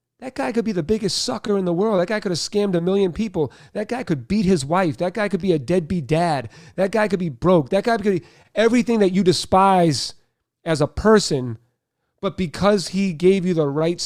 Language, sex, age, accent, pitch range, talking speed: English, male, 40-59, American, 140-185 Hz, 230 wpm